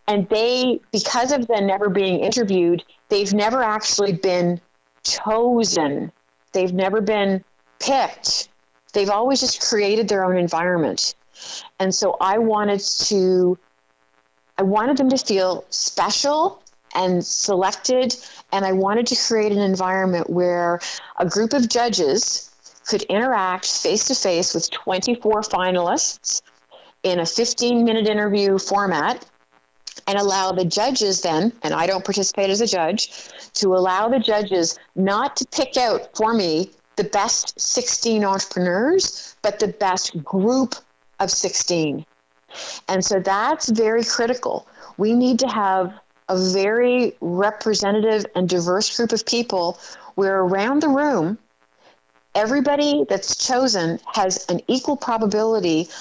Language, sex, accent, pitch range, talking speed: English, female, American, 185-230 Hz, 130 wpm